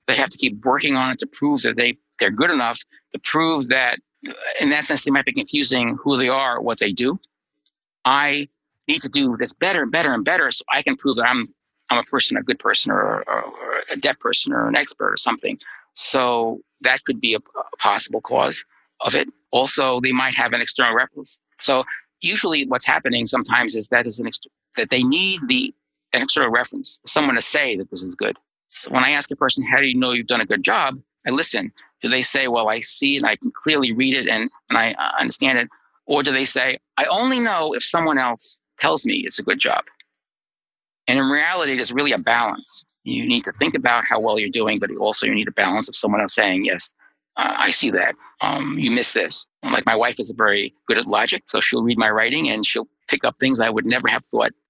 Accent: American